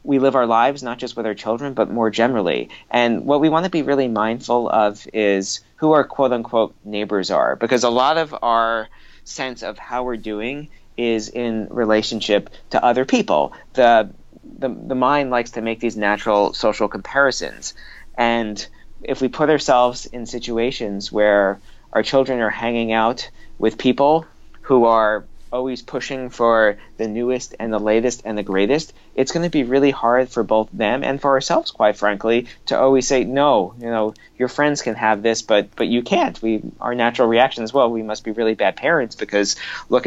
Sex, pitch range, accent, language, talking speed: male, 110-125 Hz, American, English, 185 wpm